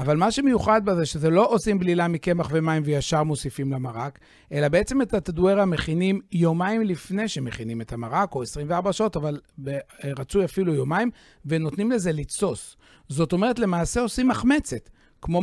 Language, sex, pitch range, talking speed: Hebrew, male, 150-200 Hz, 150 wpm